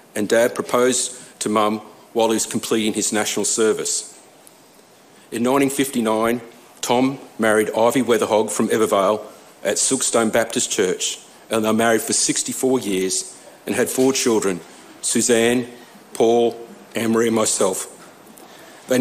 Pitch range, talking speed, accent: 110-130 Hz, 125 wpm, Australian